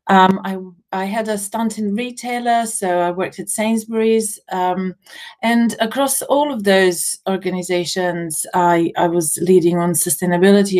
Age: 40-59